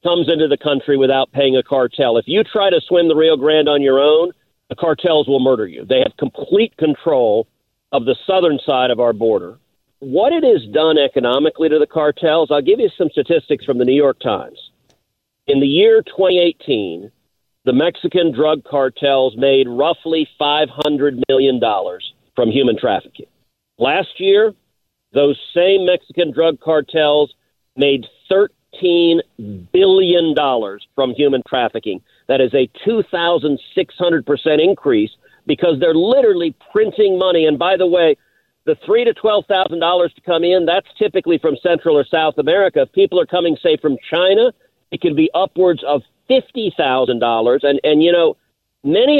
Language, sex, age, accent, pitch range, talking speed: English, male, 50-69, American, 140-190 Hz, 165 wpm